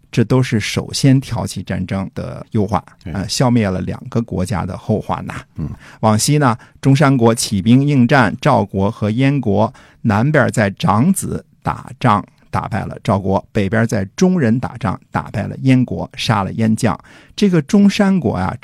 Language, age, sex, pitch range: Chinese, 50-69, male, 100-140 Hz